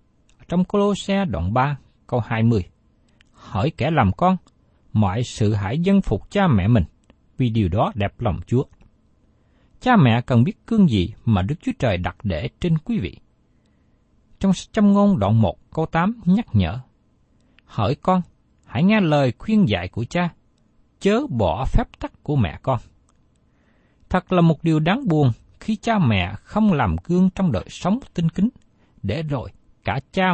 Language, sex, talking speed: Vietnamese, male, 170 wpm